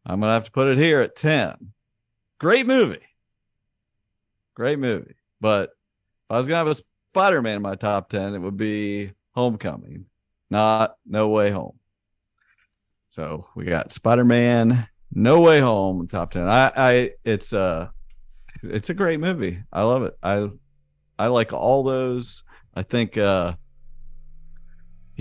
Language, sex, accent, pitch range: English, male, American, 100-130 Hz